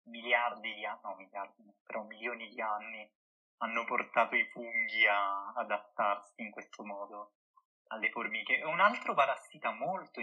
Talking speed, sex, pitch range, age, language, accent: 140 wpm, male, 110-135 Hz, 20-39, Italian, native